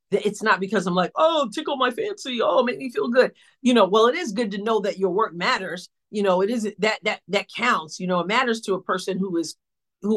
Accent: American